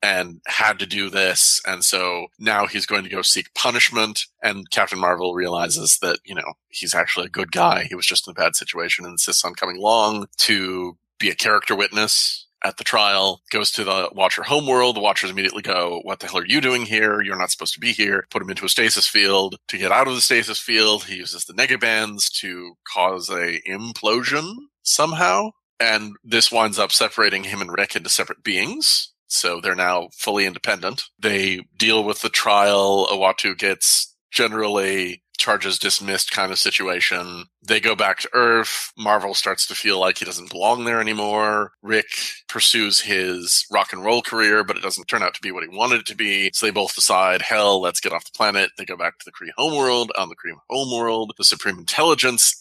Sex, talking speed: male, 205 wpm